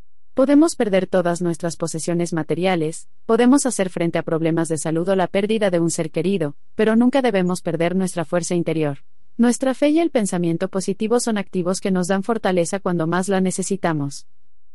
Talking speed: 175 wpm